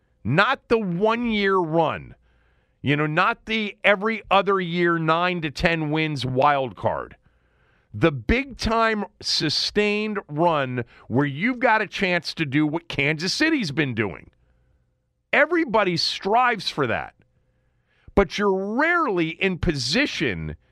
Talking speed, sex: 115 wpm, male